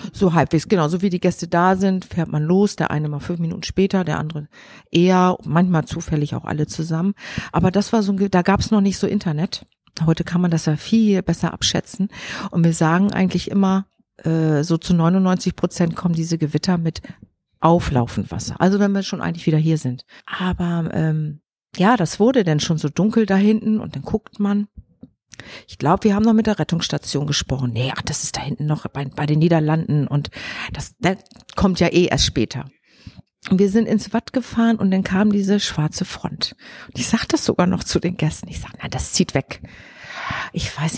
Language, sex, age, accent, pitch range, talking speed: German, female, 50-69, German, 160-200 Hz, 210 wpm